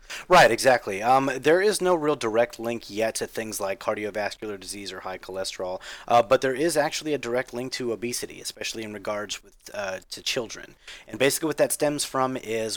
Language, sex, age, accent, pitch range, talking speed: English, male, 30-49, American, 105-130 Hz, 195 wpm